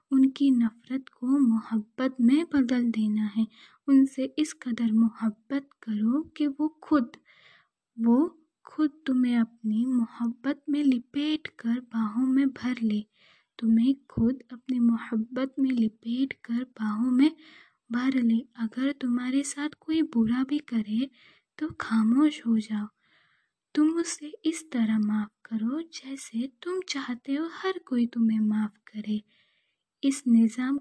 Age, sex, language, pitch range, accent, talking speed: 20-39, female, Hindi, 230-285 Hz, native, 130 wpm